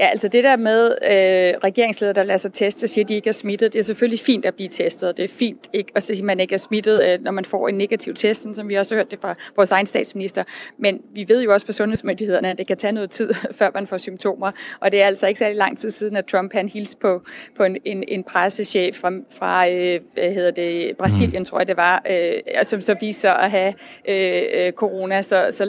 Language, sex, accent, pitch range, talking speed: Danish, female, native, 190-220 Hz, 265 wpm